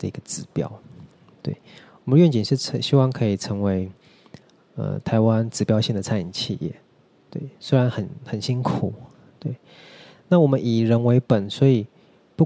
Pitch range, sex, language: 105-135 Hz, male, Chinese